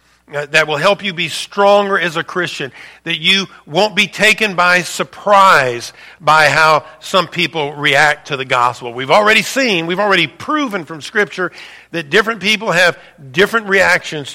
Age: 50-69